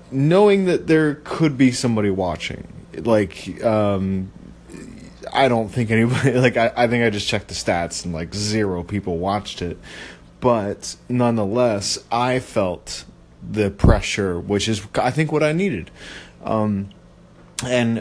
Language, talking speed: English, 145 wpm